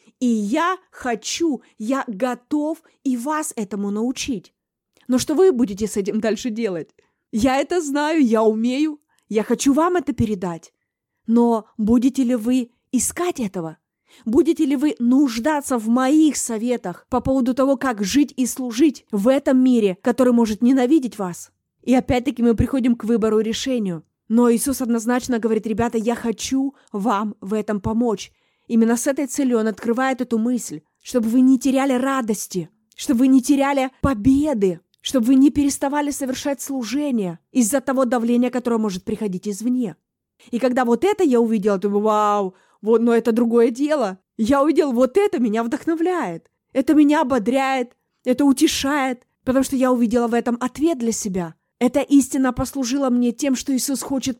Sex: female